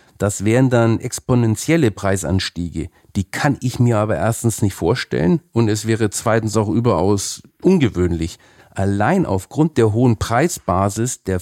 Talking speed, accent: 135 wpm, German